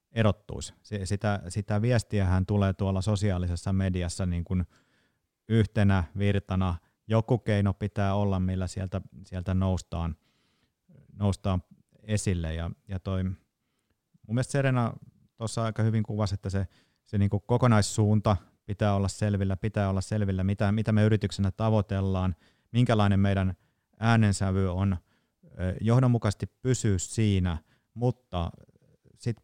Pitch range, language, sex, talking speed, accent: 95-110 Hz, Finnish, male, 120 wpm, native